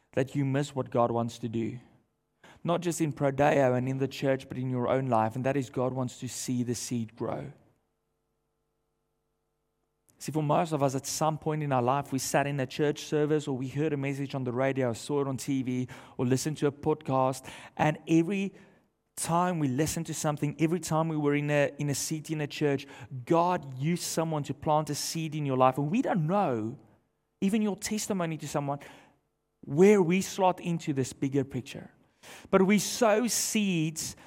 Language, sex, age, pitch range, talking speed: English, male, 30-49, 135-190 Hz, 200 wpm